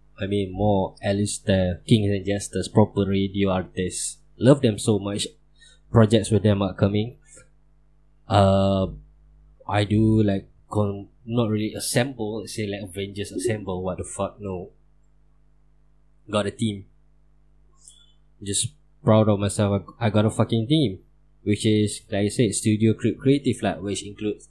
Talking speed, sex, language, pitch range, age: 140 wpm, male, Malay, 100-120 Hz, 20-39